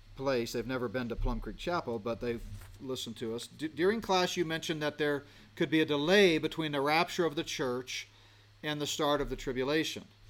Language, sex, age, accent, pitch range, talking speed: English, male, 40-59, American, 110-155 Hz, 210 wpm